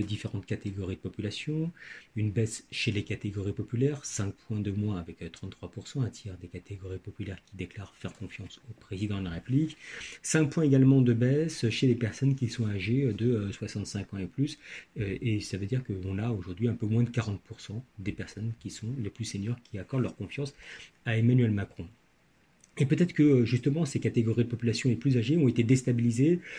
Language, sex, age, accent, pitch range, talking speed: French, male, 40-59, French, 105-130 Hz, 195 wpm